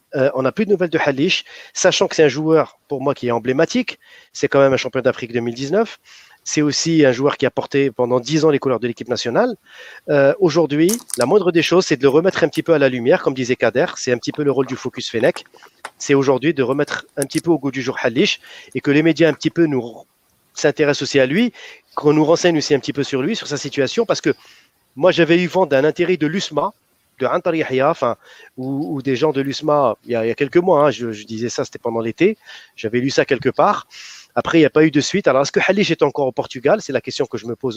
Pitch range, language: 130-170 Hz, French